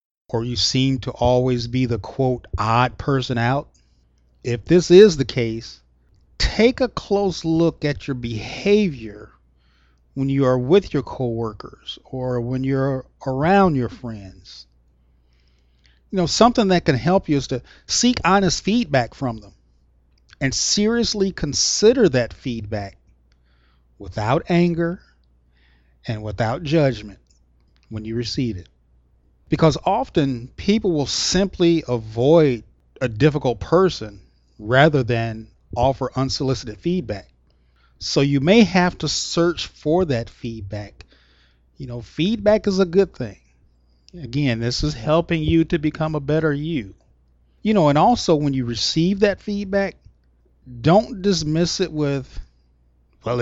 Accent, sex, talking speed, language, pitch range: American, male, 130 wpm, English, 100-160 Hz